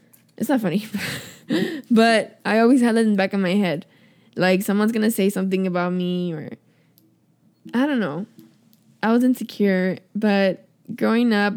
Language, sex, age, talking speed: English, female, 10-29, 170 wpm